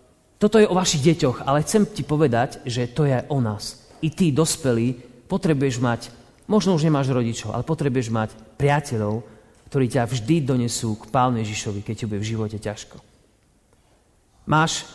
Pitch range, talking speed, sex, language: 115-155 Hz, 165 wpm, male, Slovak